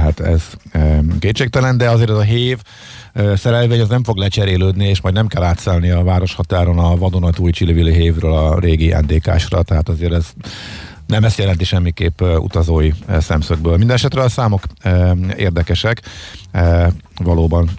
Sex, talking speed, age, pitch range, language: male, 155 wpm, 50-69, 80-100 Hz, Hungarian